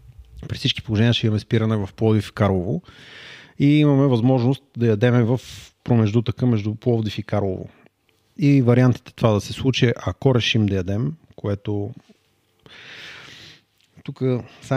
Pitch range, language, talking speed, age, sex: 110-130 Hz, Bulgarian, 140 wpm, 30-49, male